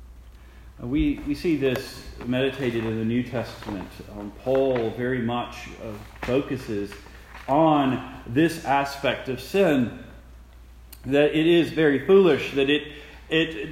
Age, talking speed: 40-59, 120 wpm